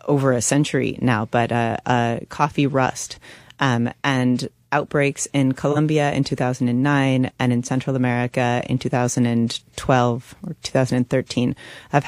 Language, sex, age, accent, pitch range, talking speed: English, female, 30-49, American, 125-140 Hz, 130 wpm